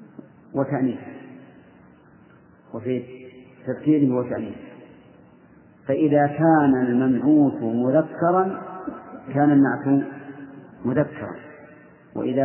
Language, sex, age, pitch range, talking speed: Arabic, male, 50-69, 120-150 Hz, 60 wpm